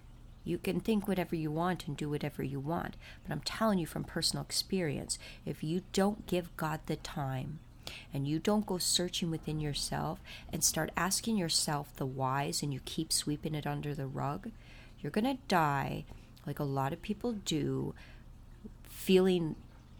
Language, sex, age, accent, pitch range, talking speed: English, female, 30-49, American, 145-180 Hz, 170 wpm